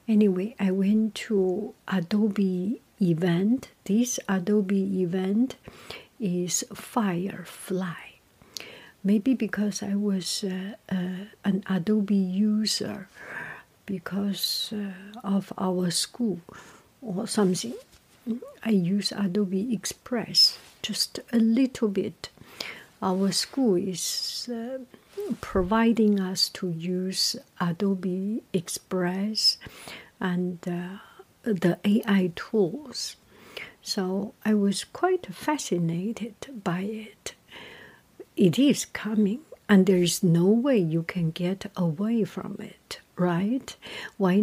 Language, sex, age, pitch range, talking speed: English, female, 60-79, 190-220 Hz, 100 wpm